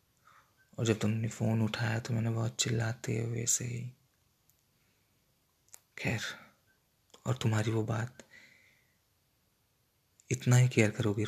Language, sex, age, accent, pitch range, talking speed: Hindi, male, 20-39, native, 110-135 Hz, 110 wpm